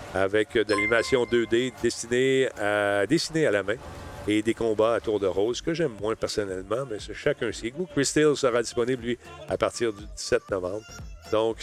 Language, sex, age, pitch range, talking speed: French, male, 40-59, 110-165 Hz, 180 wpm